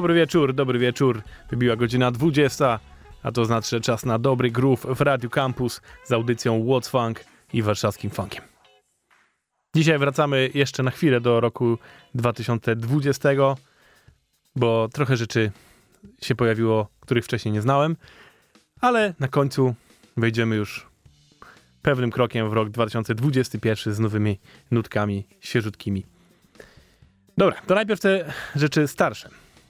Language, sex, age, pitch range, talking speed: Polish, male, 20-39, 115-135 Hz, 125 wpm